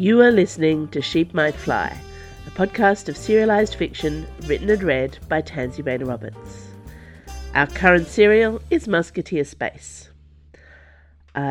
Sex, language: female, English